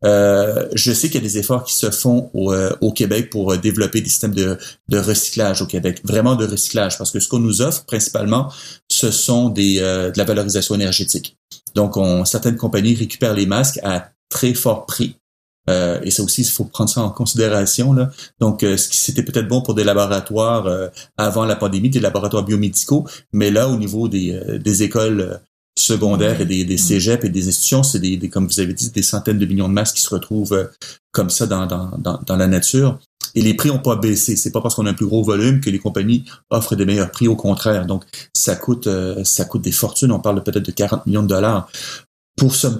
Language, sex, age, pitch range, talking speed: French, male, 30-49, 100-120 Hz, 230 wpm